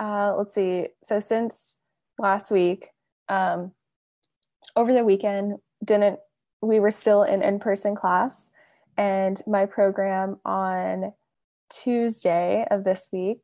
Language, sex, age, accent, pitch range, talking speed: English, female, 10-29, American, 195-225 Hz, 120 wpm